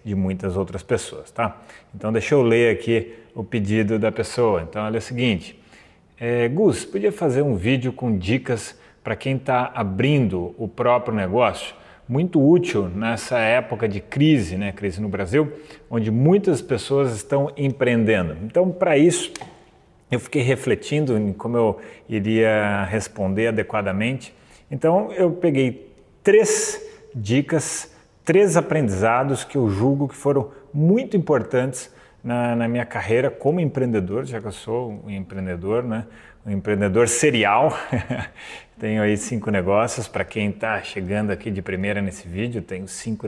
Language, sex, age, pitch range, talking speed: Portuguese, male, 30-49, 105-140 Hz, 145 wpm